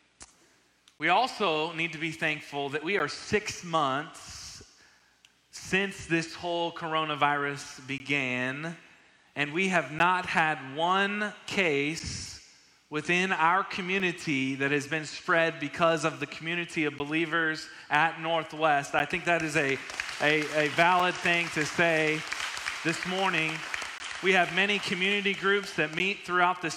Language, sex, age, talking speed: English, male, 30-49, 130 wpm